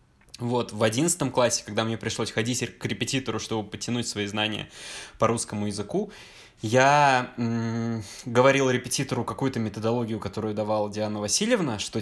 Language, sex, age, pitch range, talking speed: Russian, male, 20-39, 105-130 Hz, 135 wpm